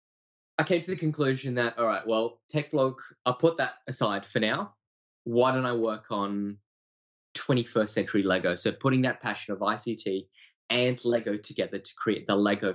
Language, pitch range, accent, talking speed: English, 95-120 Hz, Australian, 180 wpm